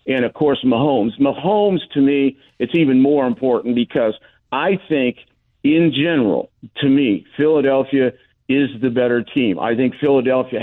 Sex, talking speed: male, 145 wpm